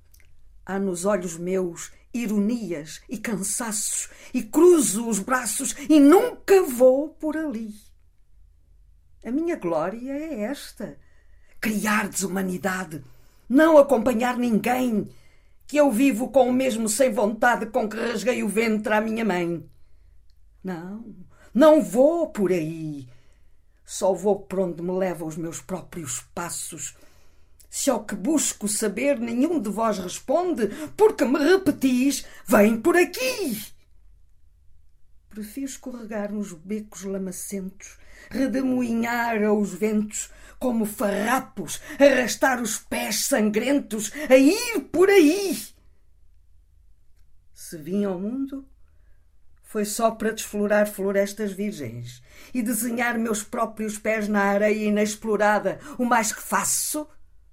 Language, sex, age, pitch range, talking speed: Portuguese, female, 50-69, 175-255 Hz, 115 wpm